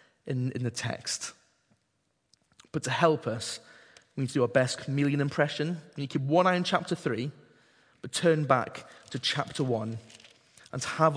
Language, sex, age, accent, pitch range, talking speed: English, male, 30-49, British, 120-165 Hz, 175 wpm